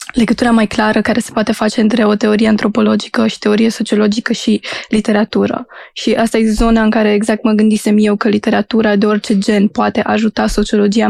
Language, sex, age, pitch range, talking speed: Romanian, female, 20-39, 205-225 Hz, 185 wpm